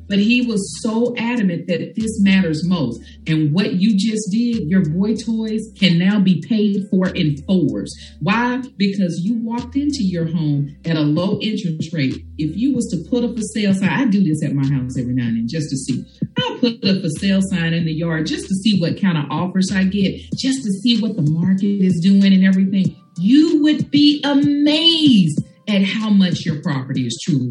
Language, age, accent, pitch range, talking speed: English, 40-59, American, 180-225 Hz, 210 wpm